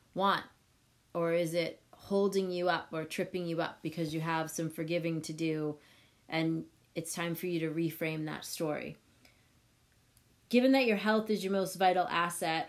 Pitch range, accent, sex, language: 165-200 Hz, American, female, English